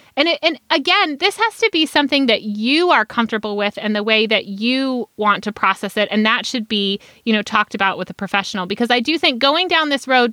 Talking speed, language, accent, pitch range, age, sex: 245 wpm, English, American, 205-275 Hz, 30-49, female